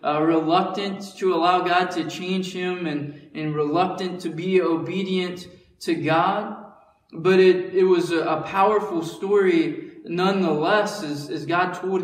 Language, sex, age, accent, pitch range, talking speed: English, male, 20-39, American, 160-195 Hz, 145 wpm